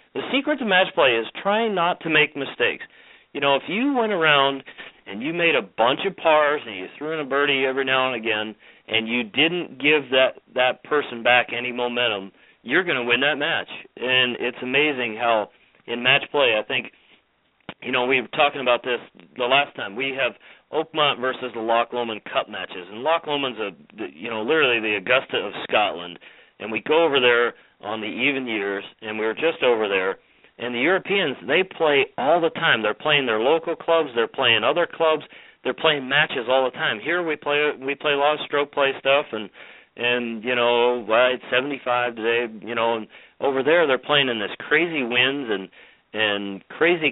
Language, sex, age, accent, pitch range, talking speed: English, male, 40-59, American, 120-155 Hz, 200 wpm